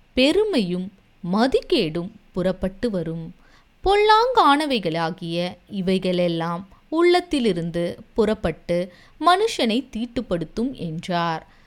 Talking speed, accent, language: 55 wpm, native, Tamil